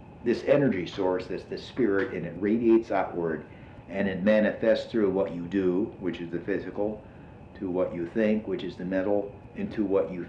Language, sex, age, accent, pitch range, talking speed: English, male, 50-69, American, 90-125 Hz, 185 wpm